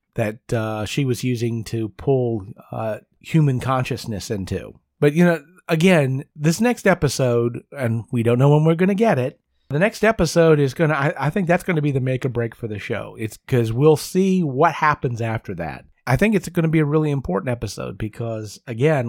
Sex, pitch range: male, 115-145 Hz